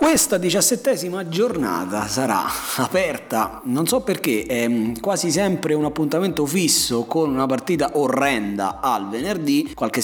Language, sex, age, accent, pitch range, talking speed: Italian, male, 30-49, native, 120-200 Hz, 125 wpm